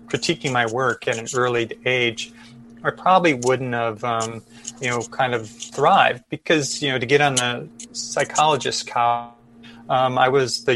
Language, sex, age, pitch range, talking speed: English, male, 30-49, 115-130 Hz, 160 wpm